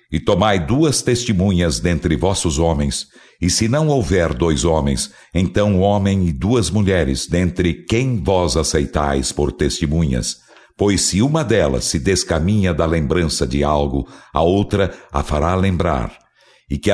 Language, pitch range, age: Arabic, 80-100 Hz, 60-79